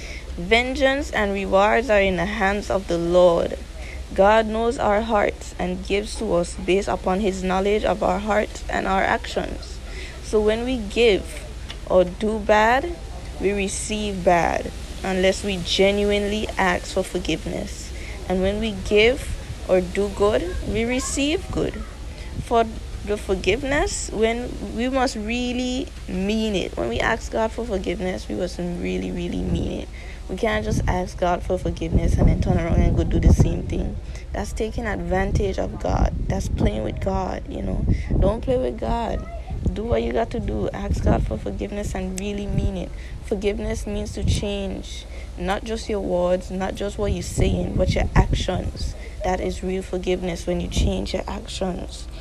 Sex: female